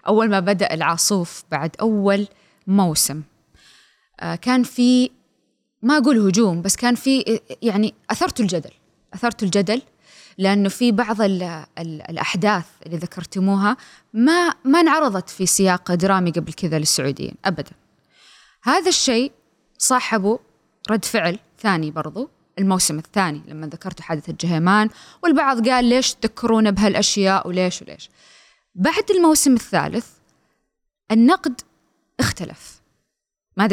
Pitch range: 180-245 Hz